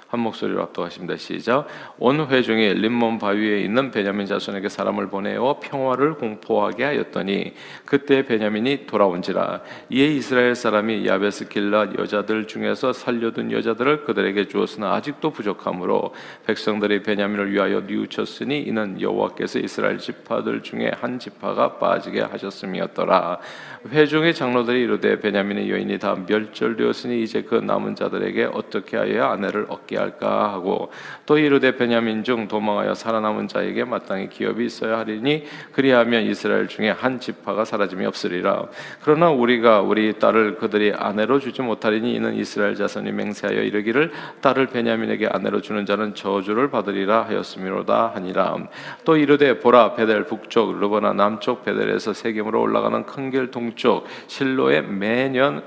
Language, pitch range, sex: Korean, 105-130 Hz, male